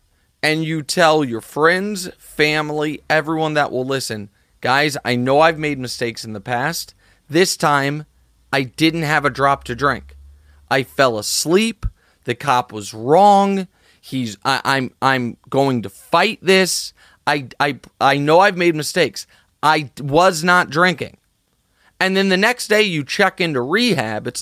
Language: English